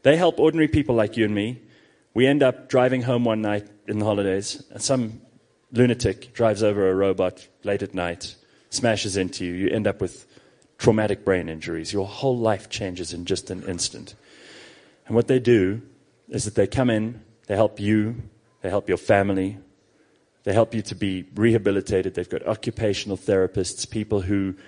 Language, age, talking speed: English, 30-49, 180 wpm